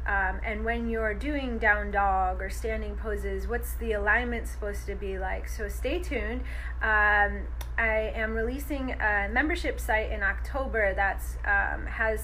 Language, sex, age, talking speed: English, female, 20-39, 150 wpm